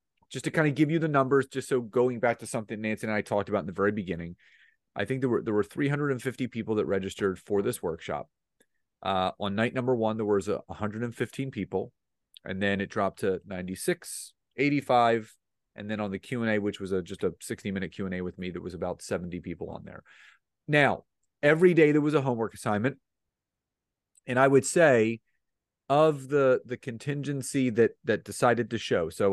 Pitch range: 105-135 Hz